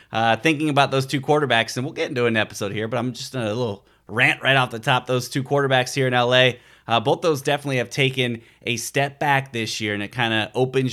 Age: 30-49